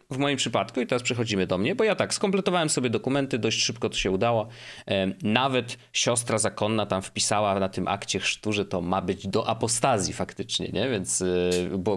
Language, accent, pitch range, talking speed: Polish, native, 100-150 Hz, 190 wpm